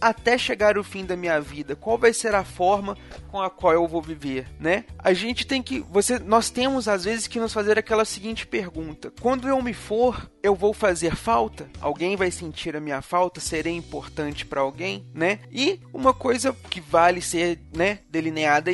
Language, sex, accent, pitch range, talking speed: Portuguese, male, Brazilian, 160-220 Hz, 195 wpm